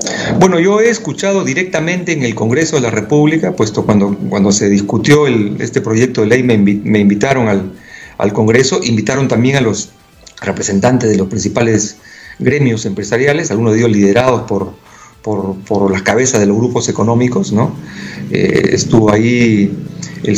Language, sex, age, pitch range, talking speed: Spanish, male, 40-59, 110-160 Hz, 160 wpm